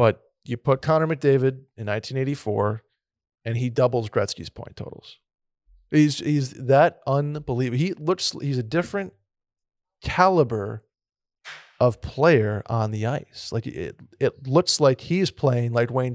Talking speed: 140 wpm